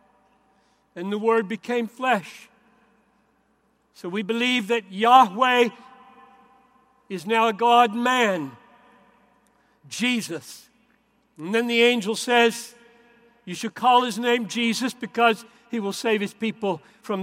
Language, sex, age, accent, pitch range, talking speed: English, male, 60-79, American, 210-250 Hz, 115 wpm